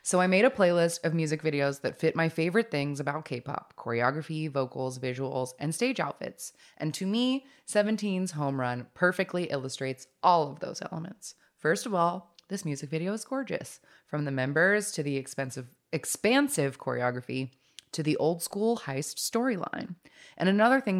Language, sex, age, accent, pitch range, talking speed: English, female, 20-39, American, 135-180 Hz, 165 wpm